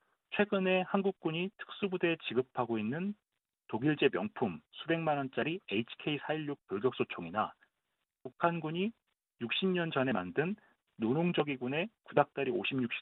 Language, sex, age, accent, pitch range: Korean, male, 40-59, native, 130-190 Hz